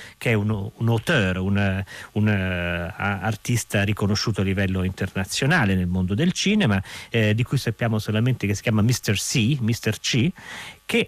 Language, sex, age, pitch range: Italian, male, 40-59, 110-145 Hz